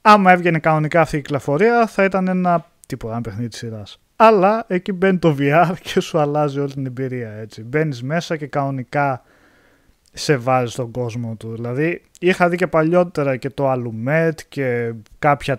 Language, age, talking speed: Greek, 20-39, 170 wpm